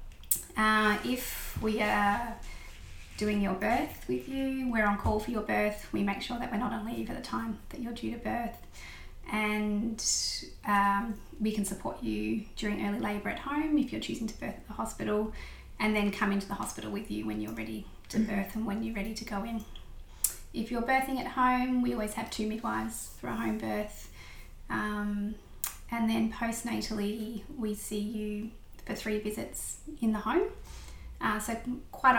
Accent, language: Australian, English